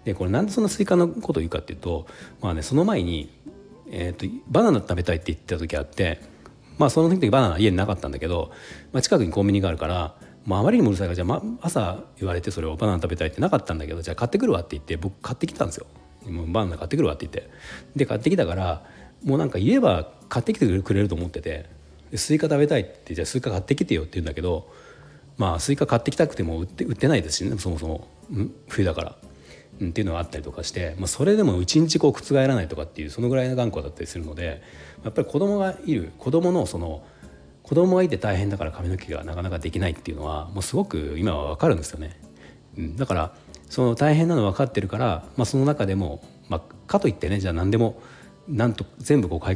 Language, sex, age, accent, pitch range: Japanese, male, 40-59, native, 85-130 Hz